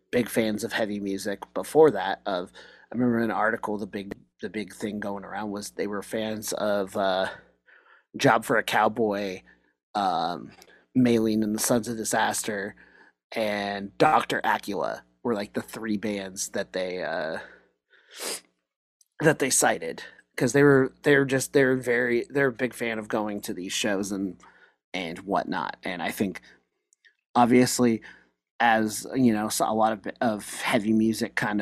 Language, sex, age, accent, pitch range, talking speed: English, male, 30-49, American, 100-115 Hz, 160 wpm